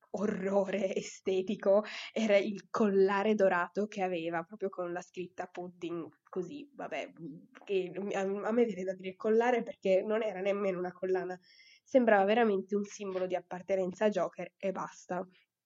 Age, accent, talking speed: 20-39, native, 145 wpm